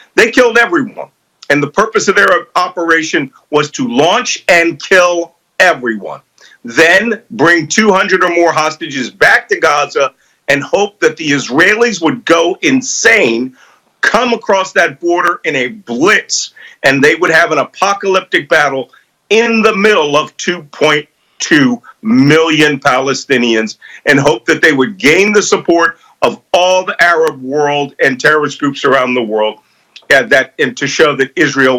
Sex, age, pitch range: male, 50-69, 140-200 Hz